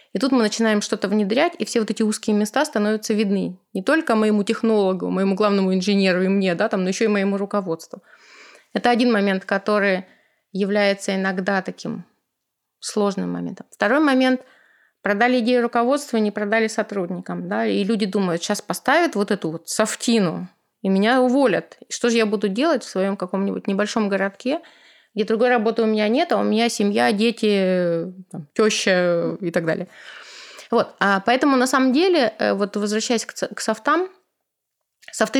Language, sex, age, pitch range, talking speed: Russian, female, 20-39, 200-235 Hz, 150 wpm